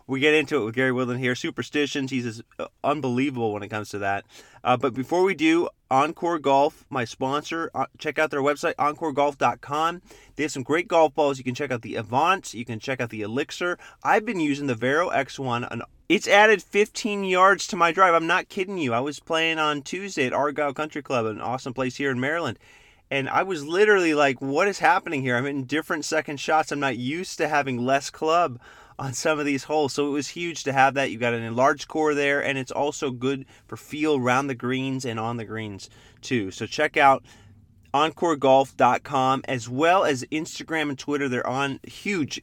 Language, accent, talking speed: English, American, 210 wpm